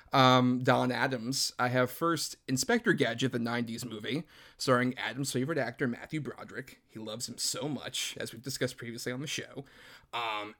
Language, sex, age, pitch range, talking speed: English, male, 30-49, 120-135 Hz, 170 wpm